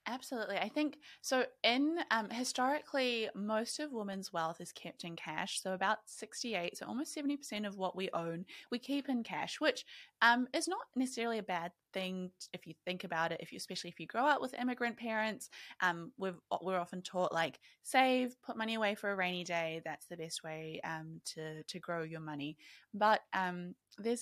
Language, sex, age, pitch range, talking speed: English, female, 20-39, 175-245 Hz, 195 wpm